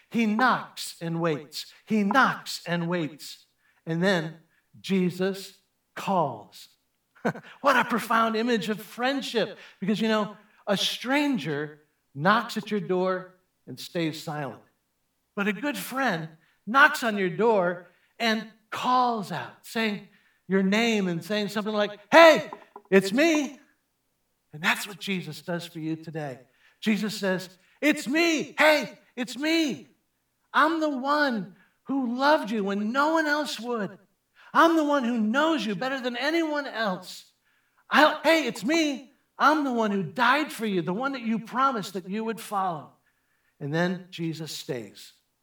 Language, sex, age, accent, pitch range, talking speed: English, male, 60-79, American, 180-255 Hz, 145 wpm